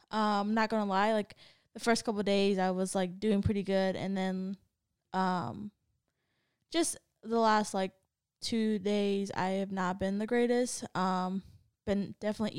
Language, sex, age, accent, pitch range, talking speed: English, female, 10-29, American, 195-225 Hz, 160 wpm